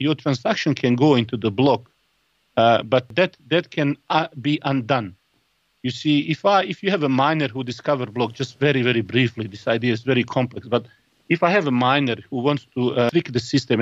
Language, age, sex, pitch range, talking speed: English, 50-69, male, 125-160 Hz, 215 wpm